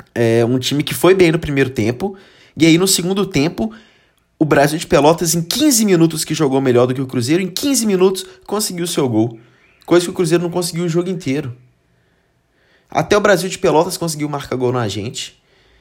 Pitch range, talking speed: 125-175 Hz, 200 wpm